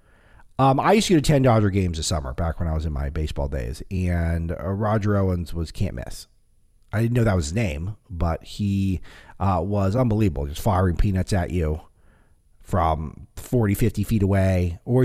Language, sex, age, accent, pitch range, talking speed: English, male, 40-59, American, 85-110 Hz, 195 wpm